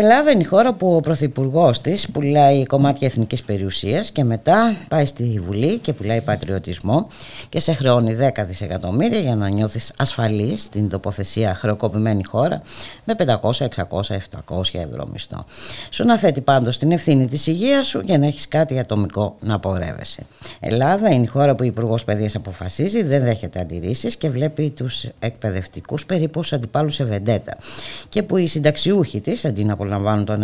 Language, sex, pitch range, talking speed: Greek, female, 100-145 Hz, 160 wpm